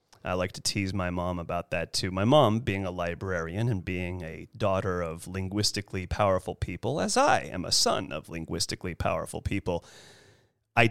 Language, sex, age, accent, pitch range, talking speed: English, male, 30-49, American, 100-135 Hz, 175 wpm